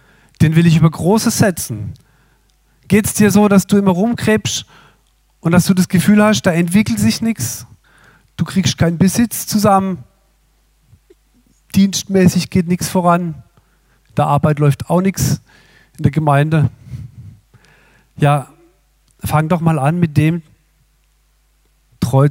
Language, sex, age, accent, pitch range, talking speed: German, male, 40-59, German, 130-180 Hz, 135 wpm